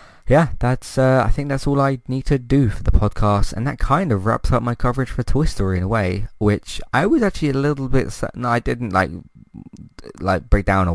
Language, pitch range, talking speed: English, 95-120 Hz, 240 wpm